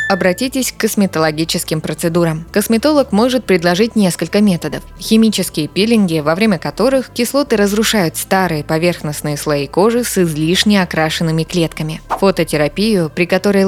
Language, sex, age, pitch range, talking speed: Russian, female, 20-39, 160-205 Hz, 120 wpm